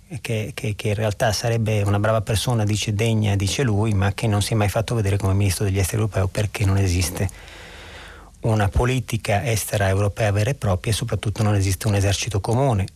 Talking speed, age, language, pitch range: 200 wpm, 40-59, Italian, 95-120 Hz